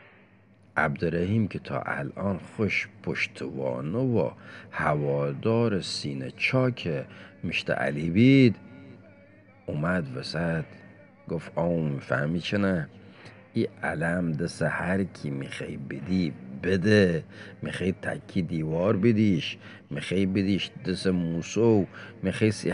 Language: Persian